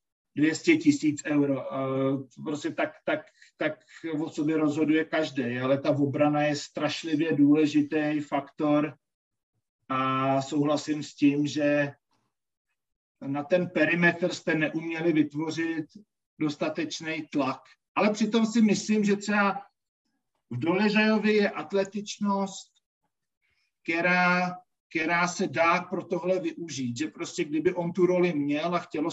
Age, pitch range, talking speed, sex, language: 50-69, 150-180 Hz, 115 wpm, male, Slovak